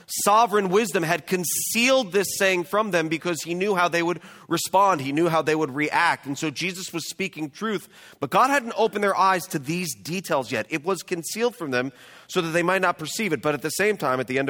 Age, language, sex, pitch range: 30-49, English, male, 145-200 Hz